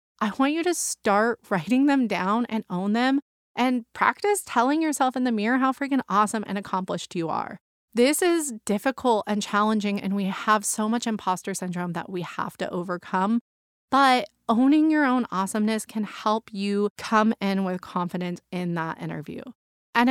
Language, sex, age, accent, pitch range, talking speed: English, female, 20-39, American, 195-250 Hz, 175 wpm